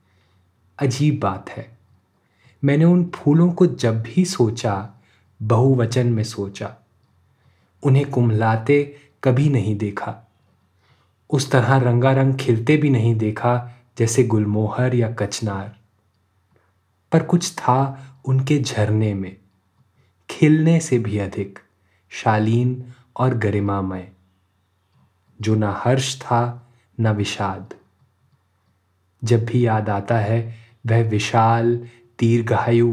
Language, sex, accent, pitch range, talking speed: Hindi, male, native, 100-125 Hz, 105 wpm